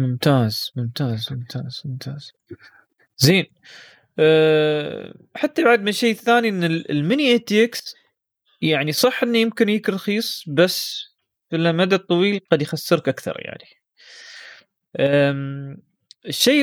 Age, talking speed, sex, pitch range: 20-39, 105 wpm, male, 125-170 Hz